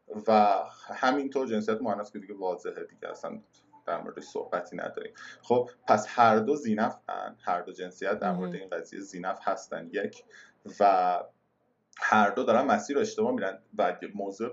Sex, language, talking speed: male, Persian, 155 wpm